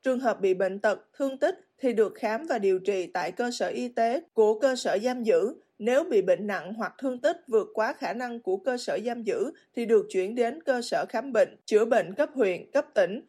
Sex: female